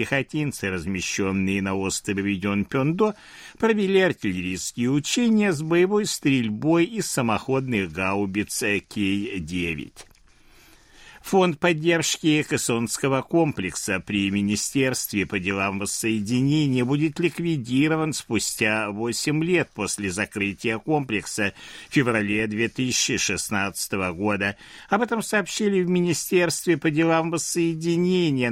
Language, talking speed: Russian, 95 wpm